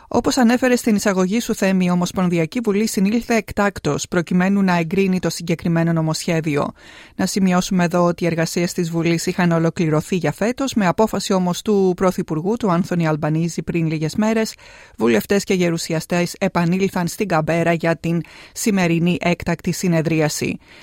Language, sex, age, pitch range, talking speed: Greek, female, 30-49, 175-225 Hz, 145 wpm